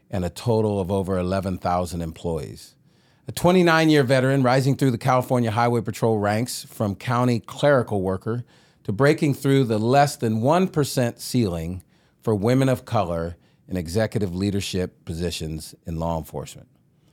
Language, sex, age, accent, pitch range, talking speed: English, male, 40-59, American, 95-130 Hz, 140 wpm